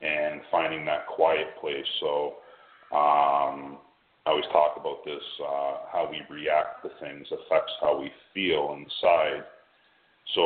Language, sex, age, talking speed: English, male, 40-59, 140 wpm